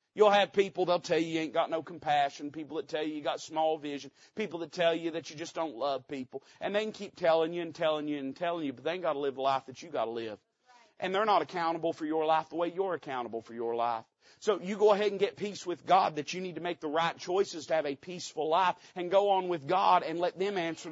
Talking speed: 285 wpm